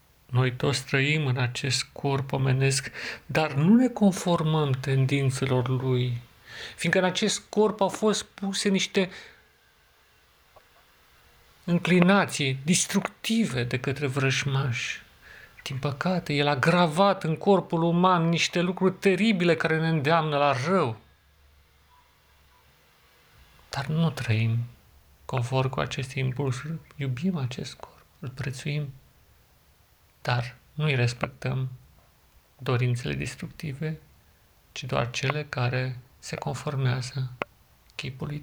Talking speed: 105 wpm